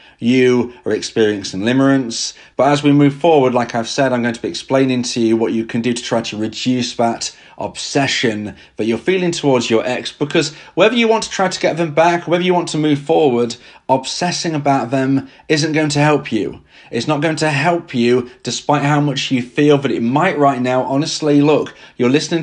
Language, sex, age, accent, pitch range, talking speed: English, male, 30-49, British, 120-150 Hz, 210 wpm